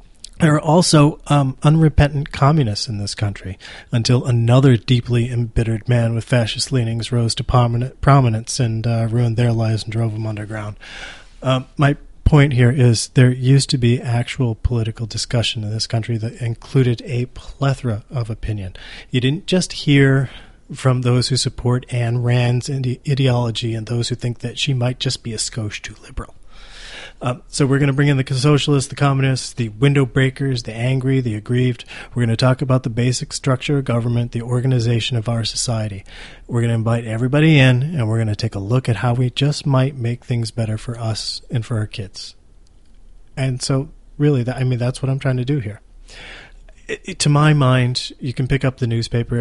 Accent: American